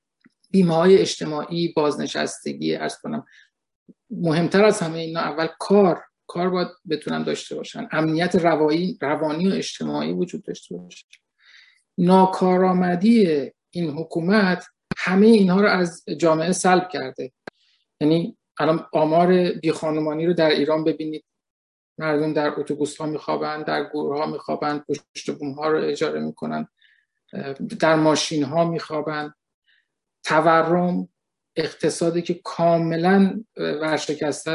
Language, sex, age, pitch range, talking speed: Persian, male, 50-69, 150-185 Hz, 110 wpm